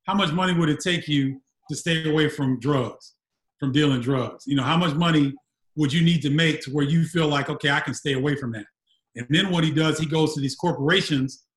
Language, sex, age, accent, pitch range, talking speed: English, male, 30-49, American, 140-170 Hz, 245 wpm